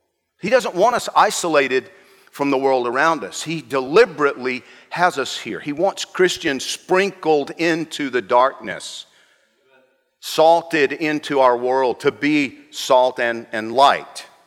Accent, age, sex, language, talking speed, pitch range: American, 50-69, male, English, 135 wpm, 120-165 Hz